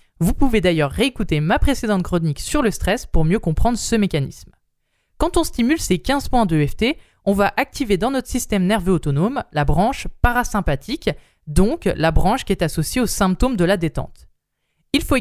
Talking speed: 185 wpm